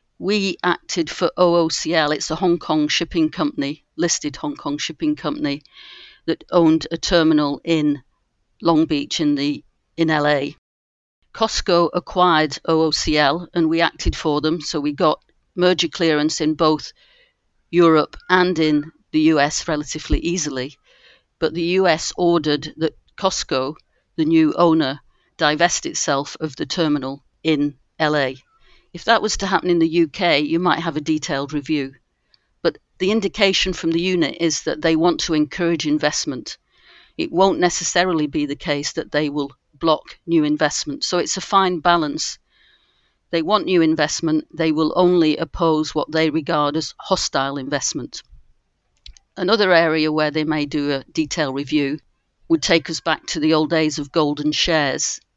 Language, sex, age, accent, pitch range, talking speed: English, female, 50-69, British, 150-175 Hz, 155 wpm